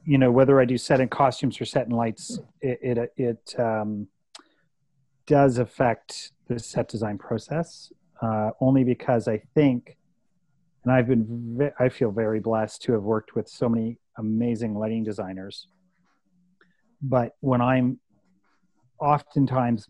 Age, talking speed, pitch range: 30-49, 145 wpm, 105-130 Hz